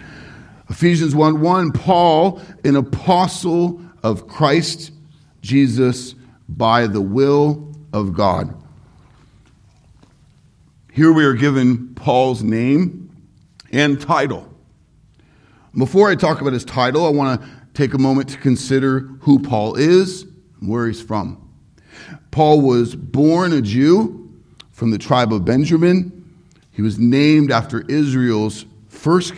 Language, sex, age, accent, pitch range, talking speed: English, male, 50-69, American, 120-155 Hz, 120 wpm